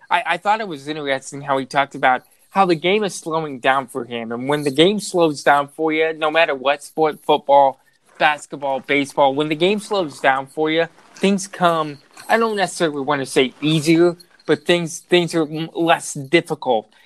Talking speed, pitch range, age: 195 wpm, 140-170 Hz, 20-39